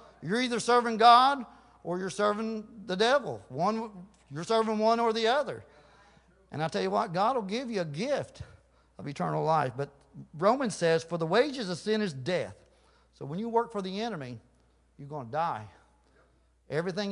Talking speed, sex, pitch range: 180 wpm, male, 145-215 Hz